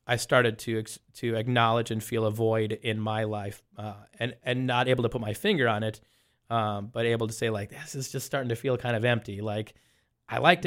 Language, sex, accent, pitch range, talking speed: English, male, American, 110-125 Hz, 230 wpm